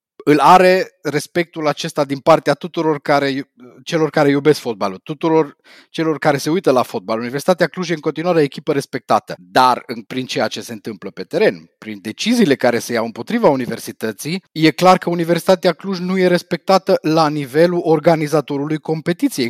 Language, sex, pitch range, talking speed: Romanian, male, 140-180 Hz, 165 wpm